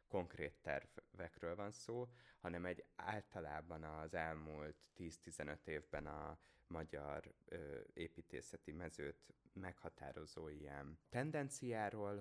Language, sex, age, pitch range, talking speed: Hungarian, male, 20-39, 75-100 Hz, 95 wpm